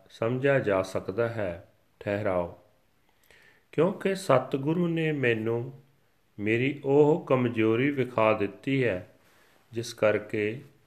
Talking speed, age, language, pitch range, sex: 95 wpm, 40-59, Punjabi, 100-125 Hz, male